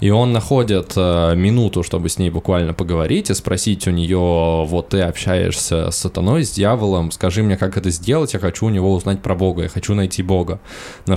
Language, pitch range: Russian, 85-100 Hz